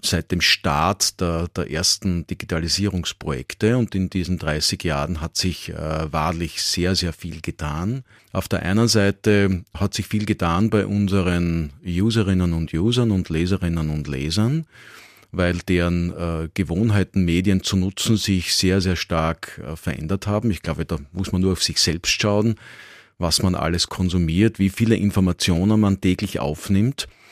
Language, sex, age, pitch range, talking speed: German, male, 40-59, 85-105 Hz, 155 wpm